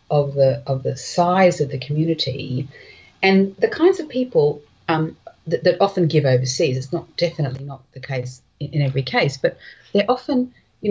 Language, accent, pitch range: English, Australian, 130-190 Hz